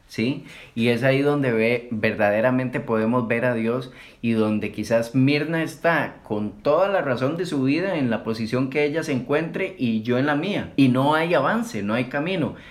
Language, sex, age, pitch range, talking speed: Spanish, male, 30-49, 110-140 Hz, 200 wpm